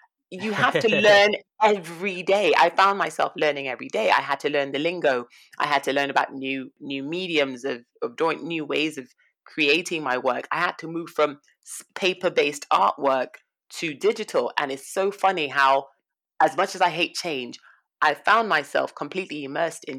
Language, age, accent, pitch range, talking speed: English, 30-49, British, 145-195 Hz, 185 wpm